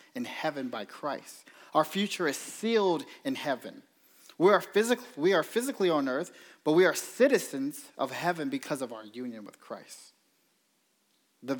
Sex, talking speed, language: male, 150 wpm, English